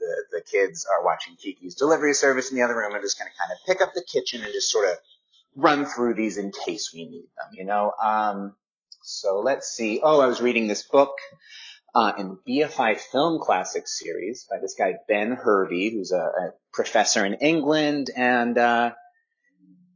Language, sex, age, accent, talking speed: English, male, 30-49, American, 195 wpm